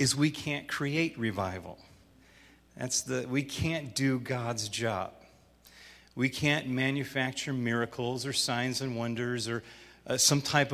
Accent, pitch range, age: American, 105-135 Hz, 40-59